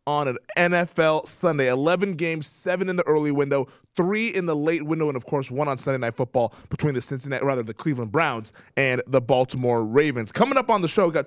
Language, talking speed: English, 225 wpm